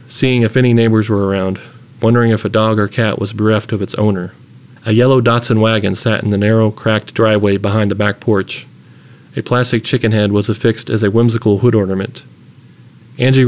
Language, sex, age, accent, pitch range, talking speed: English, male, 40-59, American, 110-125 Hz, 190 wpm